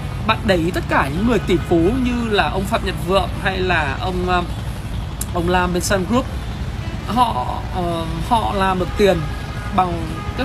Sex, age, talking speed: male, 20-39, 170 wpm